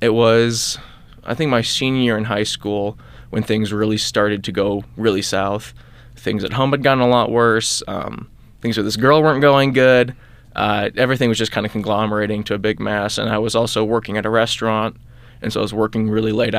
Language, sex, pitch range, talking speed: English, male, 110-120 Hz, 215 wpm